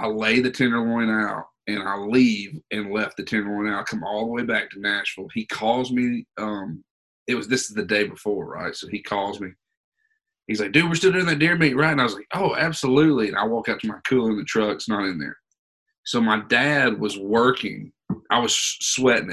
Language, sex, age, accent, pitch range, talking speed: English, male, 30-49, American, 105-160 Hz, 230 wpm